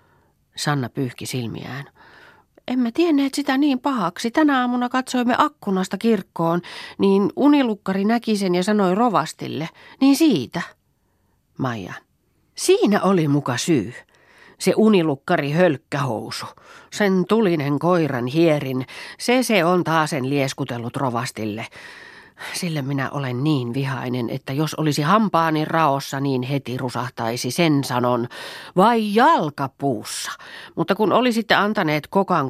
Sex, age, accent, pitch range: female, 40-59, native, 140-200 Hz